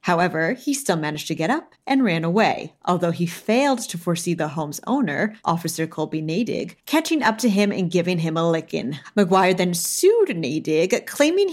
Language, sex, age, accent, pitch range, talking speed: English, female, 30-49, American, 170-250 Hz, 180 wpm